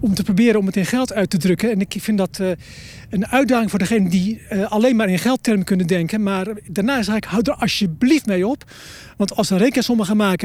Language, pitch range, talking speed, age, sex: Dutch, 185-230 Hz, 240 wpm, 40-59, male